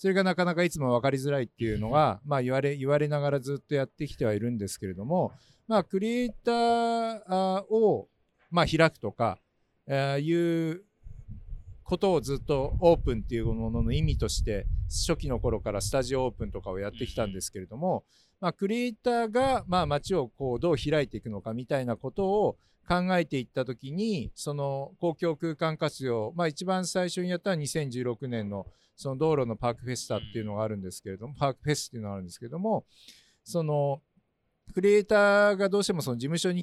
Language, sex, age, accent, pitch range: Japanese, male, 50-69, native, 115-180 Hz